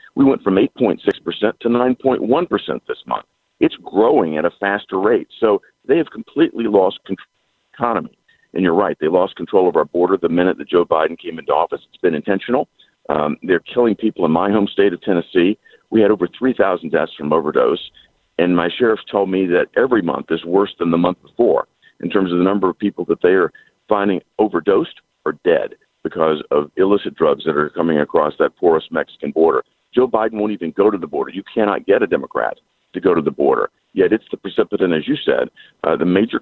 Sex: male